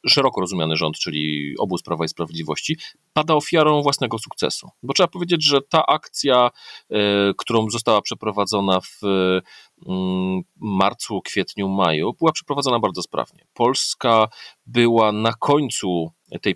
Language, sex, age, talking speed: Polish, male, 40-59, 125 wpm